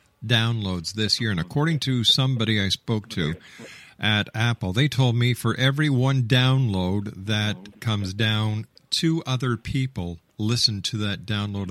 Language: English